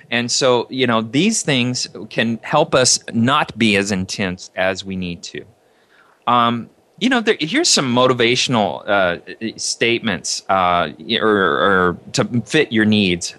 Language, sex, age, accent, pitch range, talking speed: English, male, 30-49, American, 105-135 Hz, 150 wpm